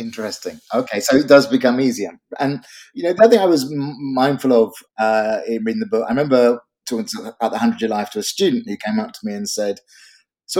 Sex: male